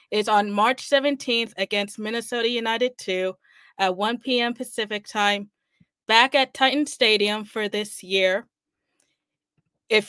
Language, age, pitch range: English, 20-39, 205-245 Hz